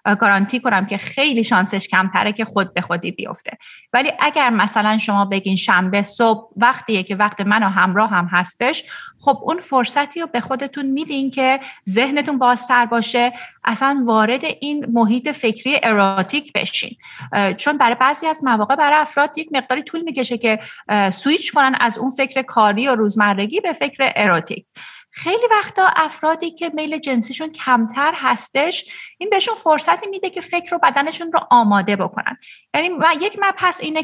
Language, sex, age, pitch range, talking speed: Persian, female, 30-49, 210-290 Hz, 155 wpm